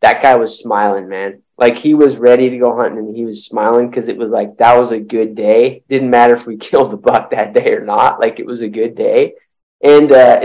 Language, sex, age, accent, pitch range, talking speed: English, male, 20-39, American, 115-145 Hz, 255 wpm